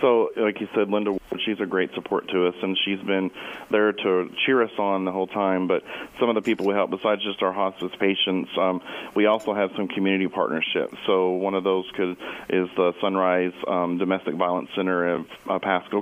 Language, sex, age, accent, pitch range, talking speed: English, male, 40-59, American, 90-100 Hz, 205 wpm